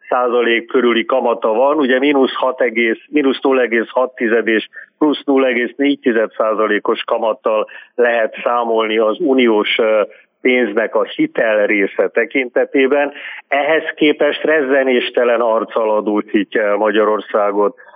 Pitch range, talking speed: 115-145 Hz, 95 wpm